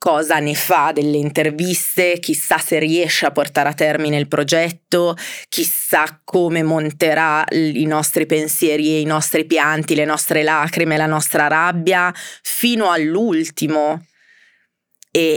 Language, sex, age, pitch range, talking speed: Italian, female, 20-39, 150-185 Hz, 130 wpm